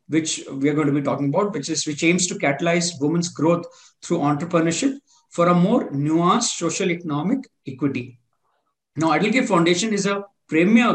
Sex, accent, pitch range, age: male, Indian, 155-205 Hz, 50-69